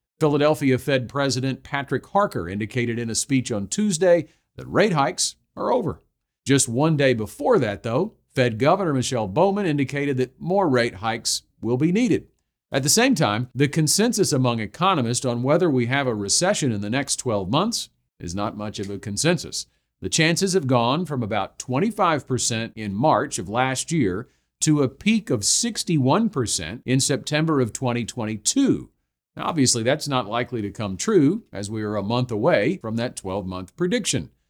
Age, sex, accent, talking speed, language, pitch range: 50-69, male, American, 170 wpm, English, 115-160 Hz